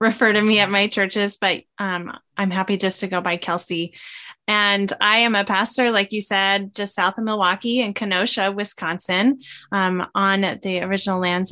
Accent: American